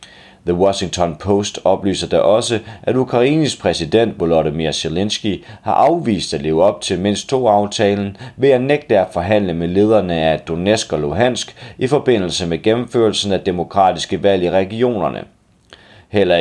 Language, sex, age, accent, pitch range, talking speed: Danish, male, 30-49, native, 90-110 Hz, 150 wpm